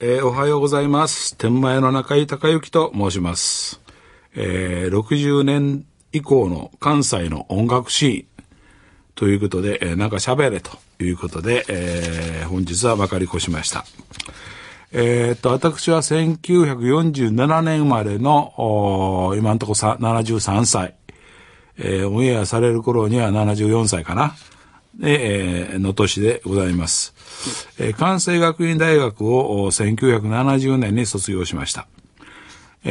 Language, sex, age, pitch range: Japanese, male, 60-79, 95-135 Hz